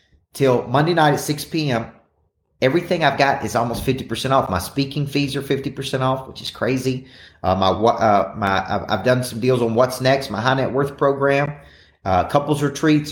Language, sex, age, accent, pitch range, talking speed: English, male, 40-59, American, 105-145 Hz, 190 wpm